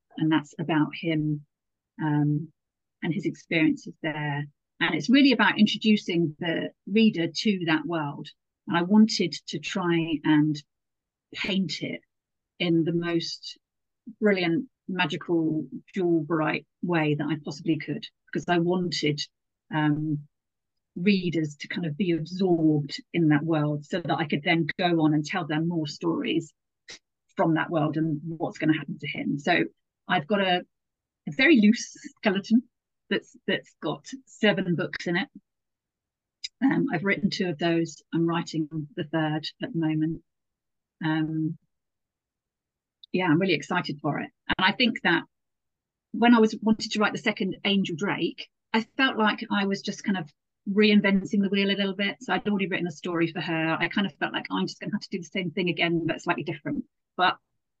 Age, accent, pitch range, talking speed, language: 40-59, British, 155-200 Hz, 170 wpm, English